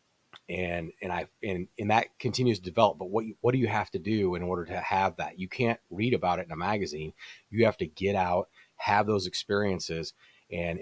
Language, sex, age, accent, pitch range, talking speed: English, male, 30-49, American, 85-105 Hz, 220 wpm